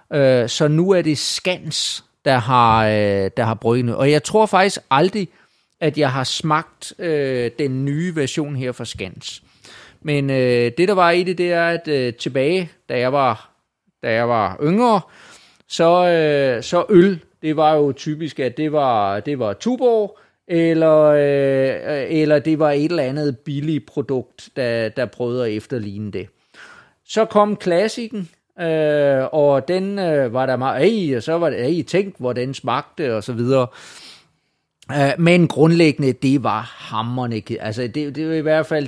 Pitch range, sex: 125-165 Hz, male